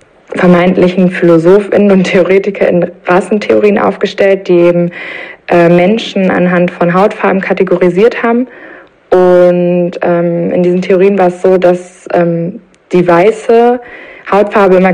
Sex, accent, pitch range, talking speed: female, German, 175-195 Hz, 120 wpm